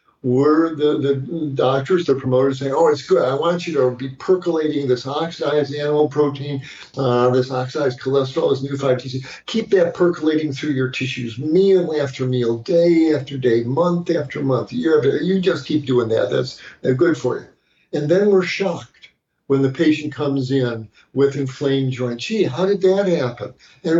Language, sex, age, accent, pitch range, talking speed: English, male, 50-69, American, 130-165 Hz, 175 wpm